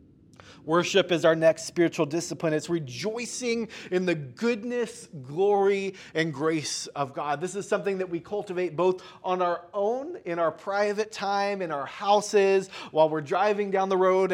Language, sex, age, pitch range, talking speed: English, male, 30-49, 160-200 Hz, 165 wpm